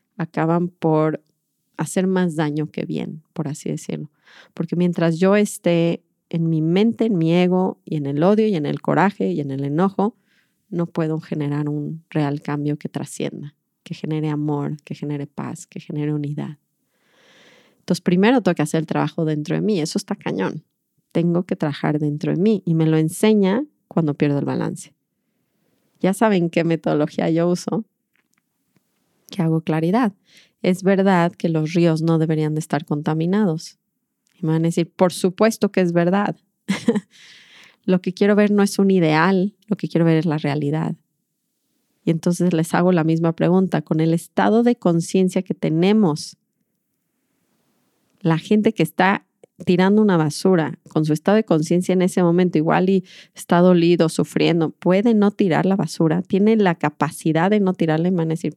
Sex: female